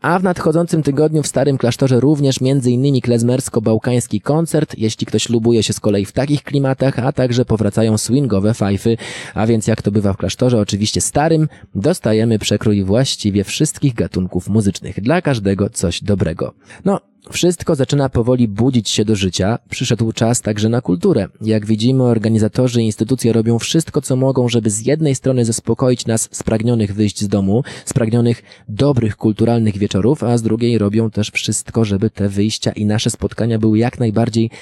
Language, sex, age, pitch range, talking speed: Polish, male, 20-39, 105-130 Hz, 165 wpm